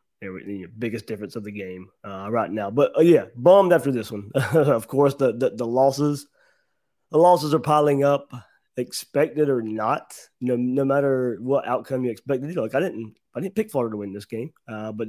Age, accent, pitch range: 20-39, American, 115-140 Hz